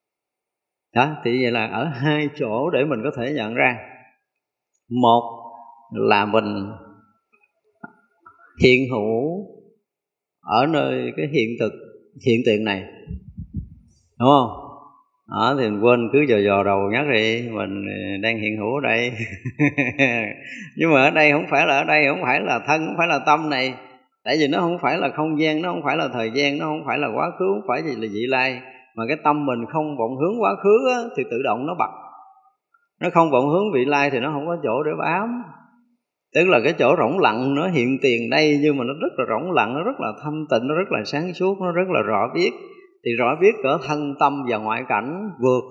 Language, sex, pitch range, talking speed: Vietnamese, male, 120-170 Hz, 205 wpm